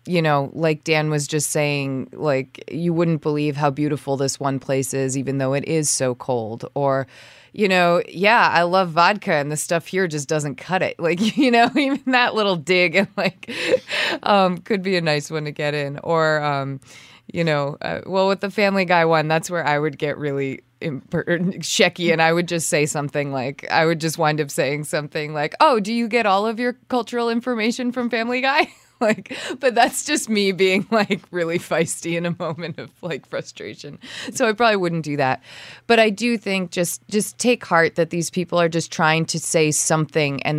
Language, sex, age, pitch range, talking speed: English, female, 20-39, 140-190 Hz, 210 wpm